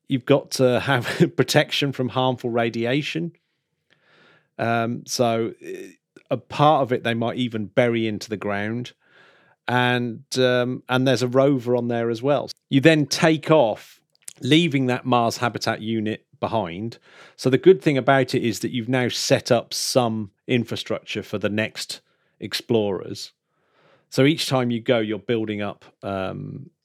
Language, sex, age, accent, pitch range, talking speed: English, male, 40-59, British, 105-130 Hz, 150 wpm